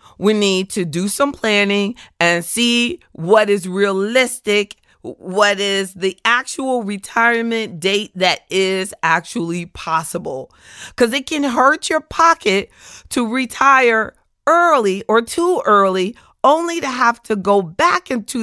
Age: 40-59